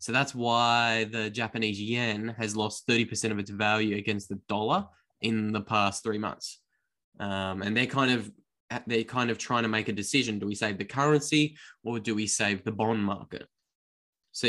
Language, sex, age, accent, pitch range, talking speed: English, male, 10-29, Australian, 110-125 Hz, 180 wpm